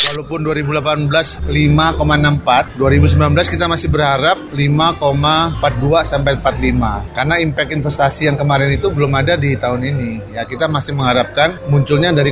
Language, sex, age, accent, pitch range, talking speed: Indonesian, male, 30-49, native, 145-190 Hz, 130 wpm